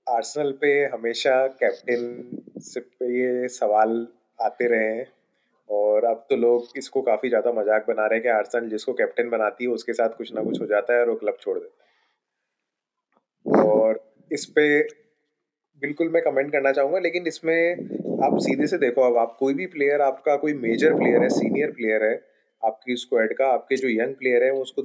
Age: 30-49